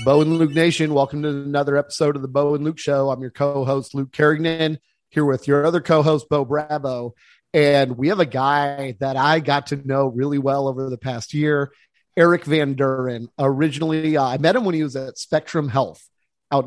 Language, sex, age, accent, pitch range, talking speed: English, male, 30-49, American, 130-155 Hz, 205 wpm